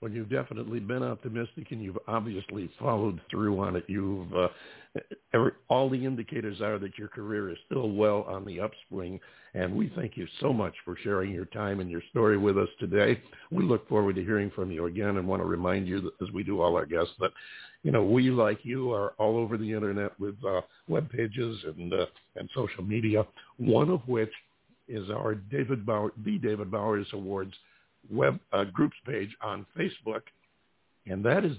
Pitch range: 100-120 Hz